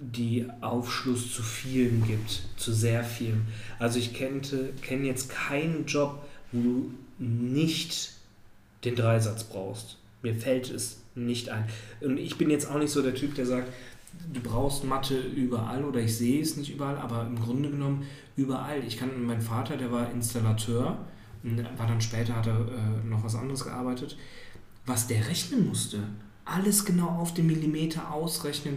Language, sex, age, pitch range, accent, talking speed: German, male, 40-59, 115-145 Hz, German, 165 wpm